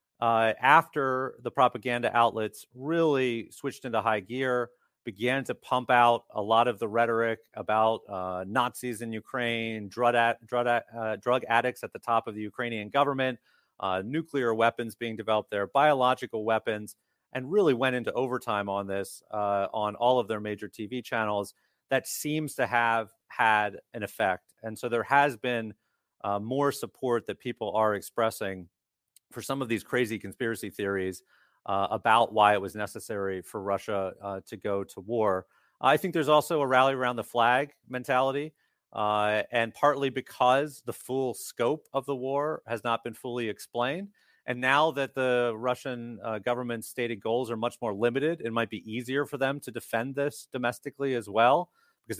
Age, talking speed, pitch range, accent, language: 30-49, 170 wpm, 110-130 Hz, American, English